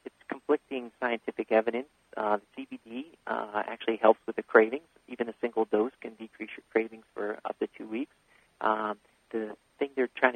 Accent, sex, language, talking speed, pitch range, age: American, male, English, 170 wpm, 110-120 Hz, 40-59